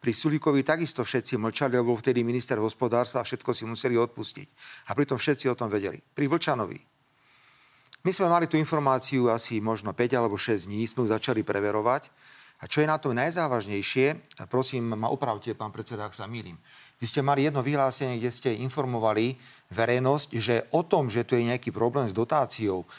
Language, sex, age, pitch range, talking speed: Slovak, male, 40-59, 115-150 Hz, 190 wpm